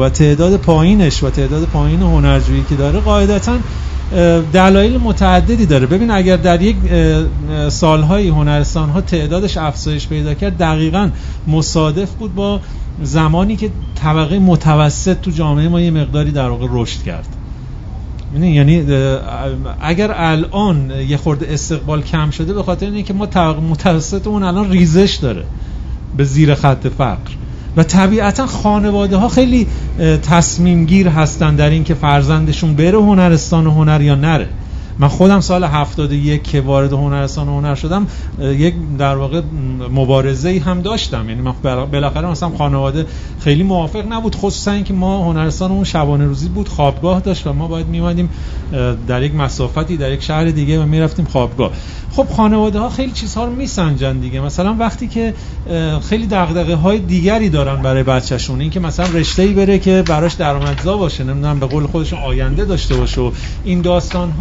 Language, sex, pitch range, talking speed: Persian, male, 140-185 Hz, 145 wpm